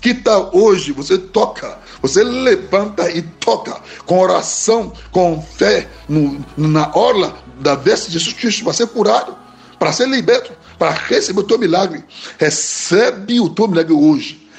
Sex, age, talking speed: male, 60-79, 150 wpm